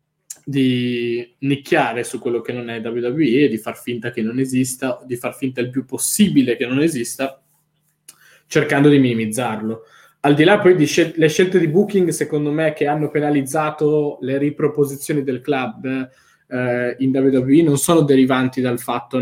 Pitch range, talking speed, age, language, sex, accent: 120-145 Hz, 160 wpm, 20-39, Italian, male, native